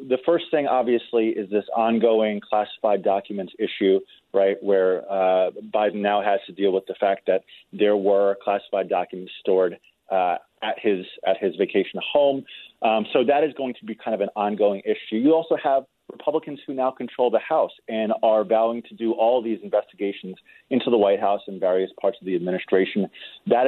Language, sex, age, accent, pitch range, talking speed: English, male, 30-49, American, 100-125 Hz, 190 wpm